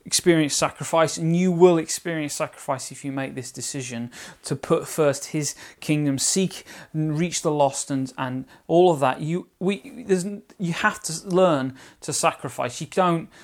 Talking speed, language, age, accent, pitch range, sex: 170 wpm, English, 30-49, British, 140-170 Hz, male